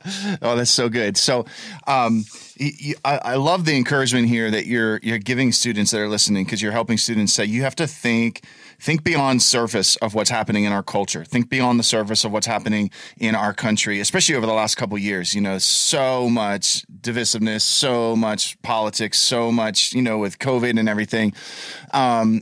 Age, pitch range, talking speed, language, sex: 30-49, 105-130 Hz, 195 wpm, English, male